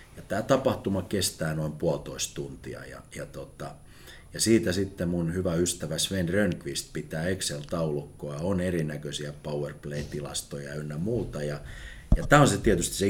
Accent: native